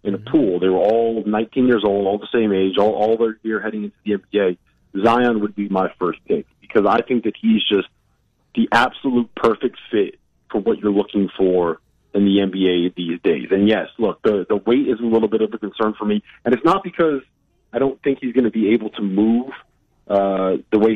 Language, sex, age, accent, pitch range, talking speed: English, male, 40-59, American, 95-115 Hz, 225 wpm